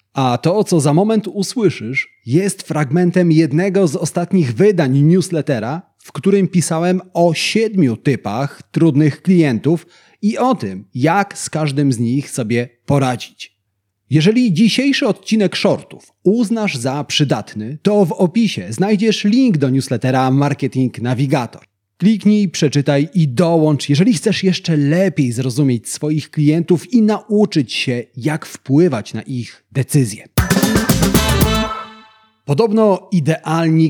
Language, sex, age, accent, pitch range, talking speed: Polish, male, 30-49, native, 130-195 Hz, 120 wpm